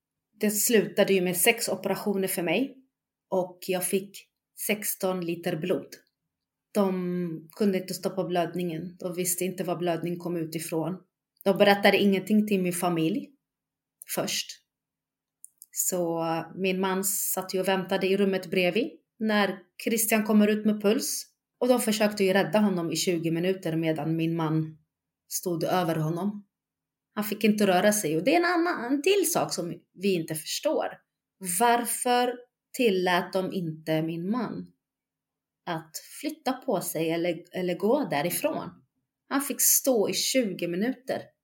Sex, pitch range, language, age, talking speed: female, 175-215 Hz, Swedish, 30-49, 145 wpm